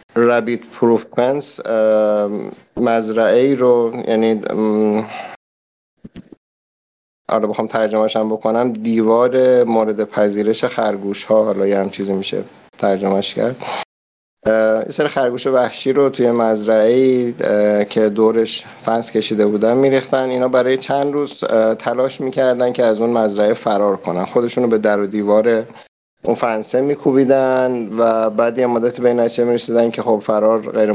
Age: 50-69